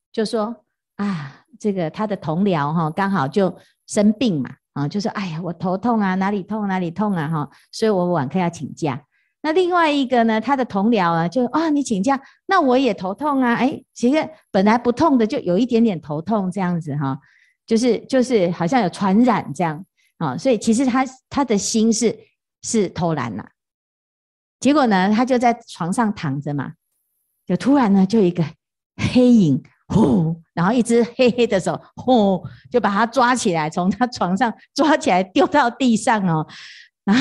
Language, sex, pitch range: Chinese, female, 175-240 Hz